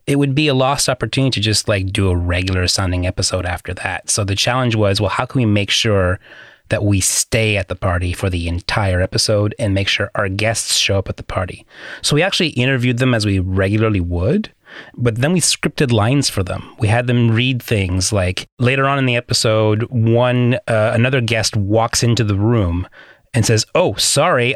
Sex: male